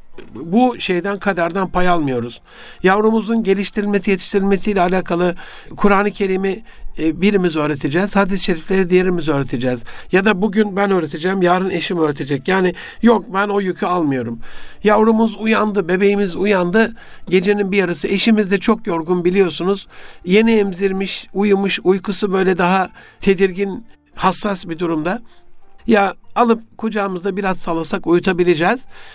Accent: native